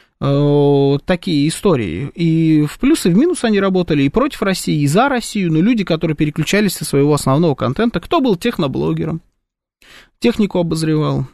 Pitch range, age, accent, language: 140-190 Hz, 20-39, native, Russian